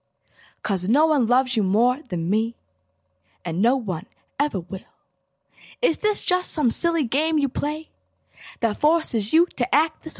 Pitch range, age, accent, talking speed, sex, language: 195-290 Hz, 10-29, American, 160 wpm, female, English